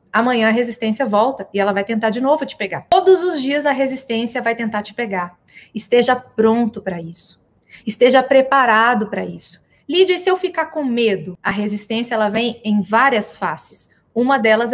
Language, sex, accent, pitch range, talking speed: Portuguese, female, Brazilian, 215-255 Hz, 185 wpm